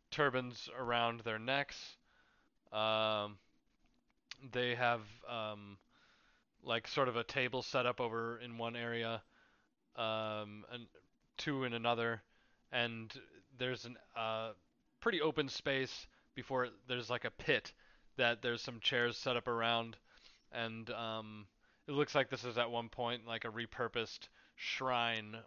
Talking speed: 135 wpm